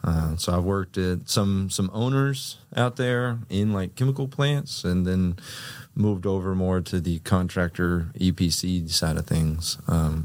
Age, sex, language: 30-49, male, English